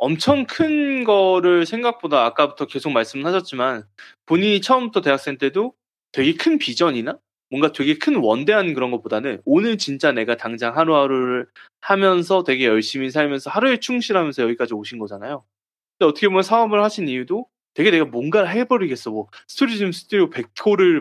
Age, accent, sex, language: 20-39, native, male, Korean